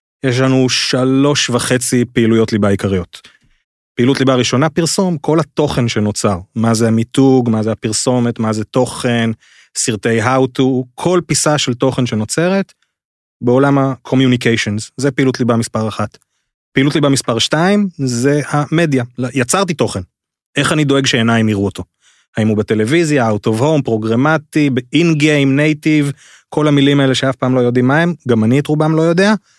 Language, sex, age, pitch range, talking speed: Hebrew, male, 30-49, 110-140 Hz, 150 wpm